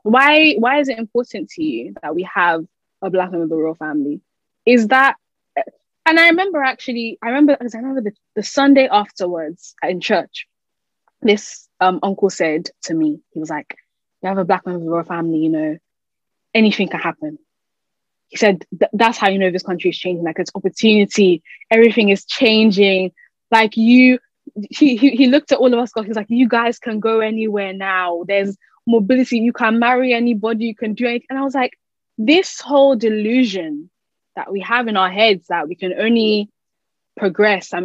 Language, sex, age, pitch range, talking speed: English, female, 10-29, 190-255 Hz, 190 wpm